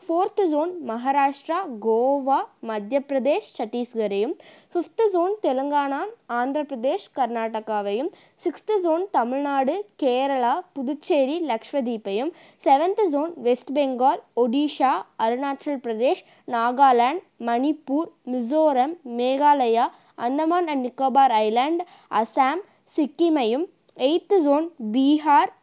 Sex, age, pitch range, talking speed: female, 20-39, 235-310 Hz, 90 wpm